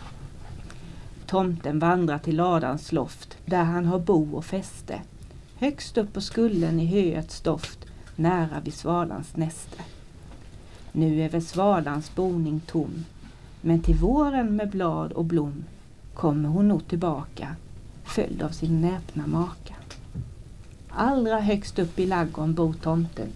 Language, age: Swedish, 40-59